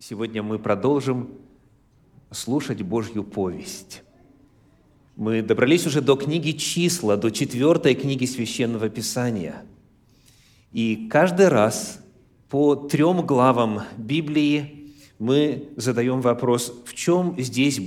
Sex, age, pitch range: male, 30-49, 115-145 Hz